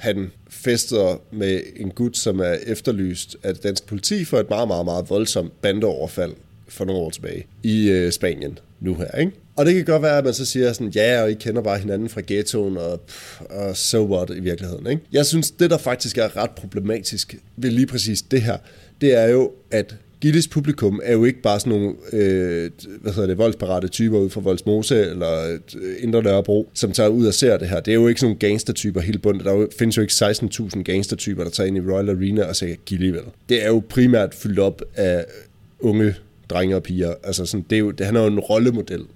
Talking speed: 220 wpm